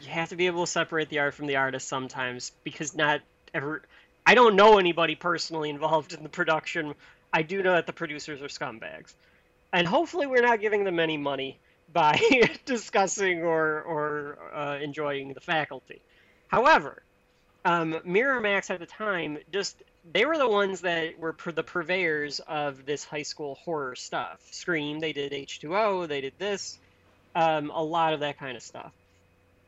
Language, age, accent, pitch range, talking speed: English, 30-49, American, 140-170 Hz, 175 wpm